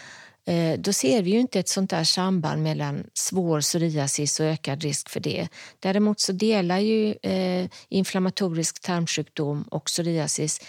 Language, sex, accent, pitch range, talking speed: Swedish, female, native, 165-195 Hz, 145 wpm